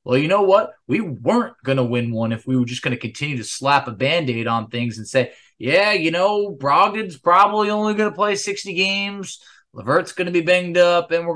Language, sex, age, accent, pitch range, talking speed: English, male, 20-39, American, 130-180 Hz, 210 wpm